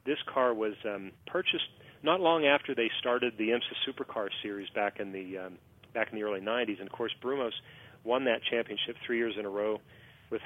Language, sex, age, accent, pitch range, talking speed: English, male, 40-59, American, 100-120 Hz, 205 wpm